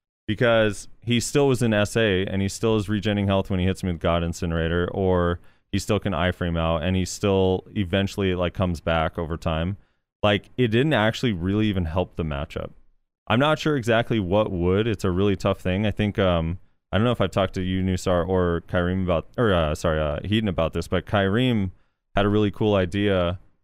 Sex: male